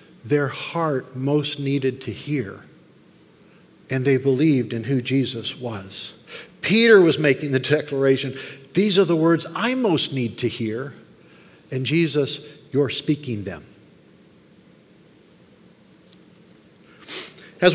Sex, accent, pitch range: male, American, 150-205 Hz